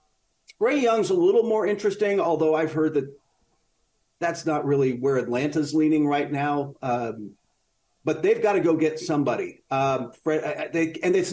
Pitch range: 135-165 Hz